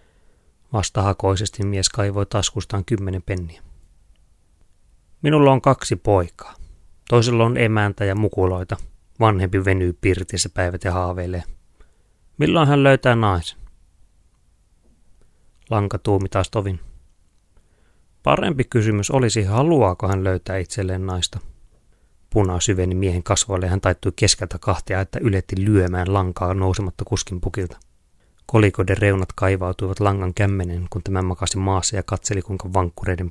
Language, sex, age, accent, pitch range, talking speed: Finnish, male, 30-49, native, 90-105 Hz, 115 wpm